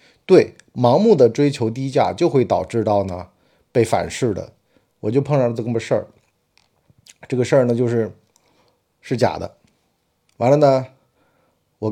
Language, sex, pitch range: Chinese, male, 105-145 Hz